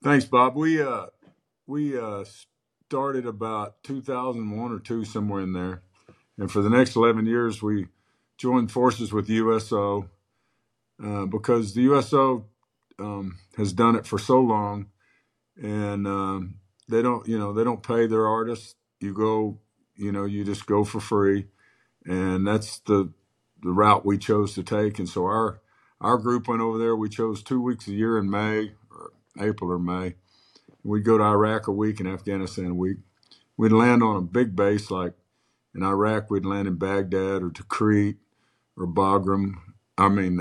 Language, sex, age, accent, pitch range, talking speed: English, male, 50-69, American, 95-115 Hz, 170 wpm